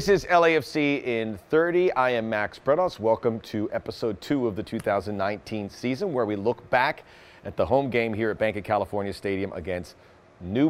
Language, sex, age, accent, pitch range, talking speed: English, male, 40-59, American, 115-150 Hz, 185 wpm